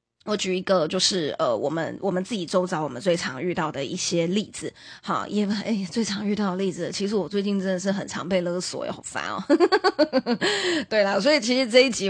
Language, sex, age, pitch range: Chinese, female, 20-39, 180-220 Hz